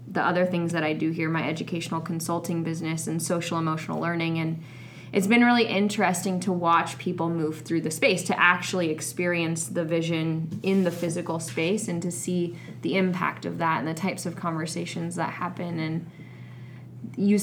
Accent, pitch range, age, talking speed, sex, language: American, 165-180 Hz, 20-39, 180 wpm, female, English